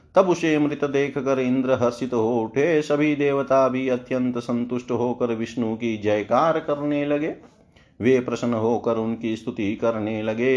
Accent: native